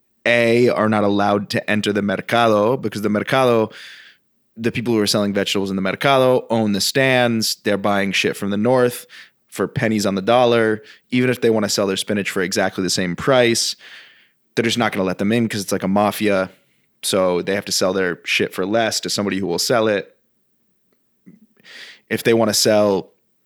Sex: male